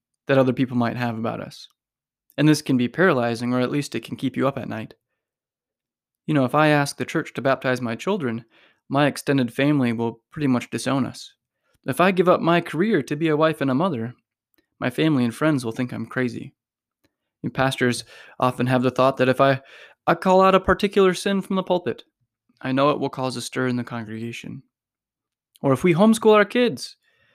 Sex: male